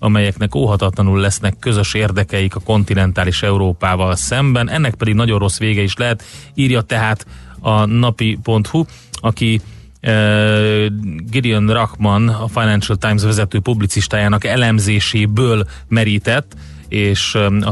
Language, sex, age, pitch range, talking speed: Hungarian, male, 30-49, 100-120 Hz, 110 wpm